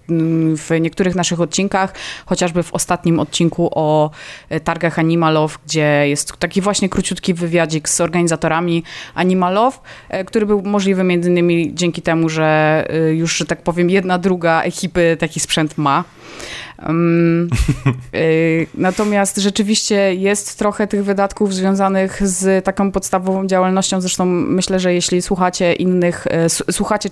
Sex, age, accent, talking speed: female, 20-39, native, 120 wpm